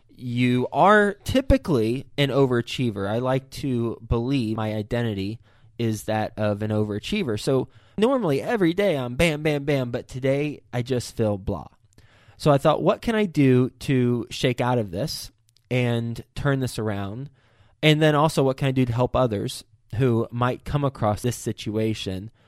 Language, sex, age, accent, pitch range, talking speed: English, male, 20-39, American, 115-145 Hz, 165 wpm